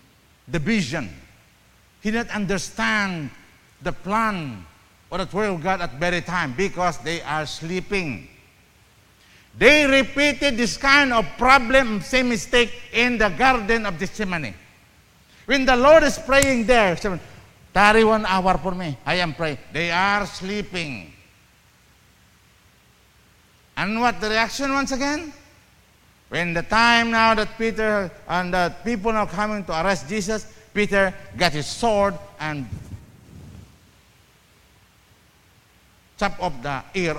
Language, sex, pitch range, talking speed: English, male, 140-230 Hz, 125 wpm